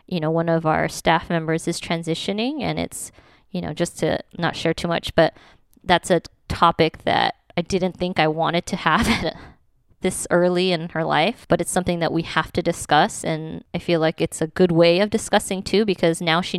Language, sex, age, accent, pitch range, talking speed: English, female, 20-39, American, 165-195 Hz, 210 wpm